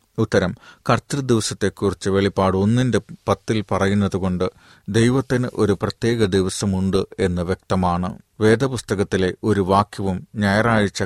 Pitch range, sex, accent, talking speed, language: 90-105 Hz, male, native, 90 wpm, Malayalam